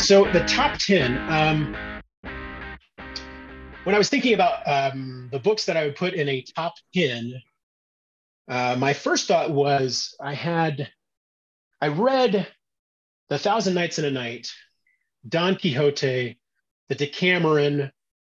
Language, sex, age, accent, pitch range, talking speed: English, male, 30-49, American, 120-155 Hz, 130 wpm